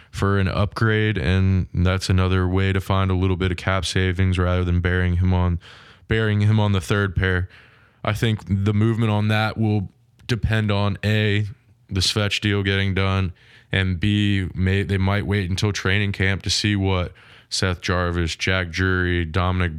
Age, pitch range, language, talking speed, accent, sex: 20-39, 90-110 Hz, English, 175 wpm, American, male